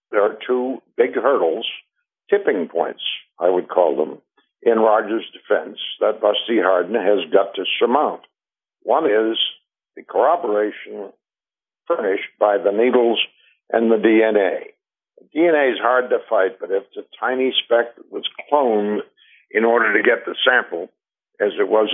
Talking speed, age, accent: 150 wpm, 60-79, American